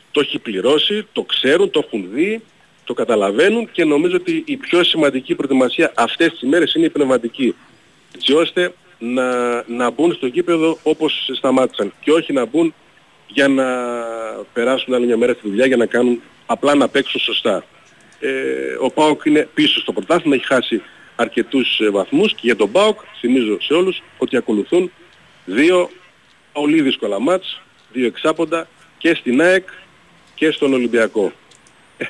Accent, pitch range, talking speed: native, 120-205 Hz, 155 wpm